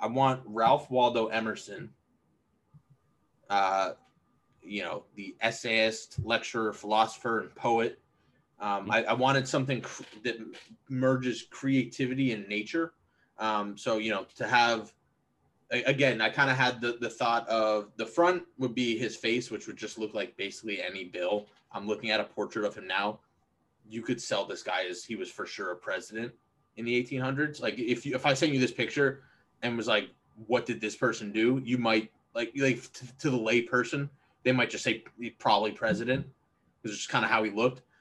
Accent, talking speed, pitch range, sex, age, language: American, 180 wpm, 110-130 Hz, male, 20-39, English